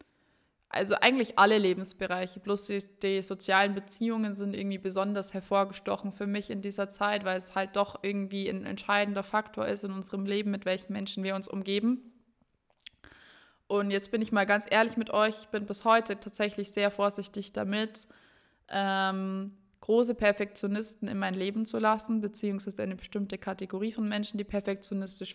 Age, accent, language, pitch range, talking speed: 20-39, German, German, 195-220 Hz, 165 wpm